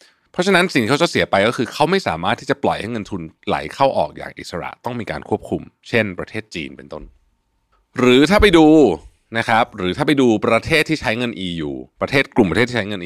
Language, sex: Thai, male